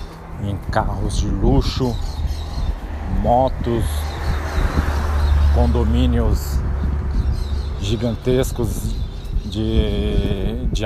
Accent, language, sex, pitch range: Brazilian, Portuguese, male, 80-120 Hz